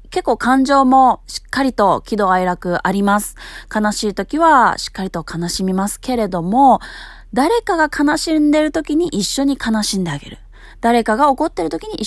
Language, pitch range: Japanese, 195-300 Hz